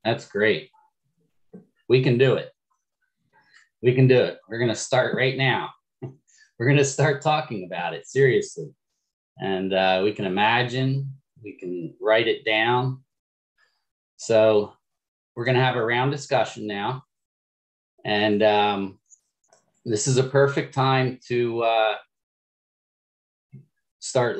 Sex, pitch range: male, 110-140 Hz